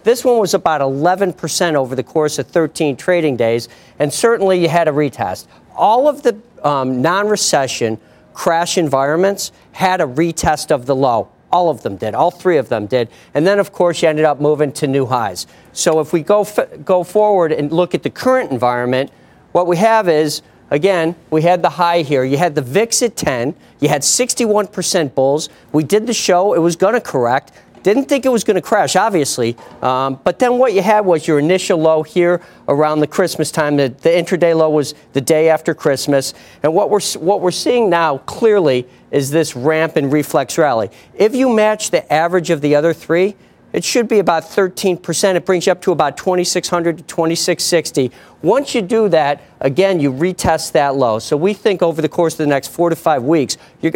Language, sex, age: English, male, 50-69